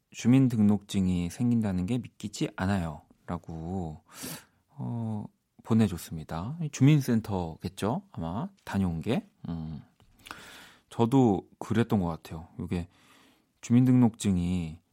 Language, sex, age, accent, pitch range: Korean, male, 40-59, native, 95-130 Hz